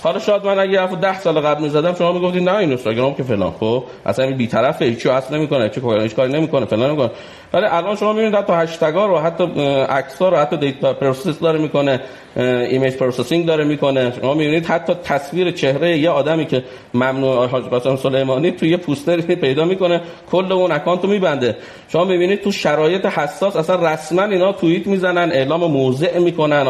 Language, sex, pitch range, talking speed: Persian, male, 135-185 Hz, 180 wpm